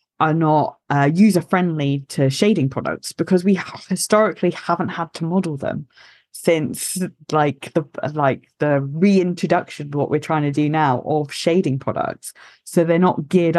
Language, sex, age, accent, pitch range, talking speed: English, female, 20-39, British, 140-175 Hz, 160 wpm